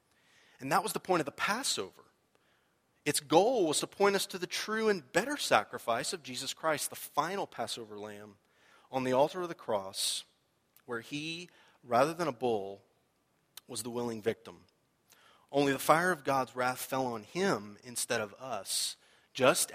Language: English